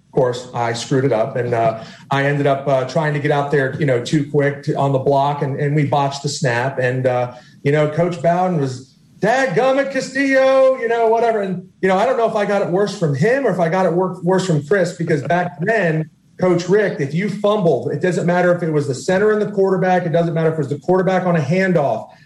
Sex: male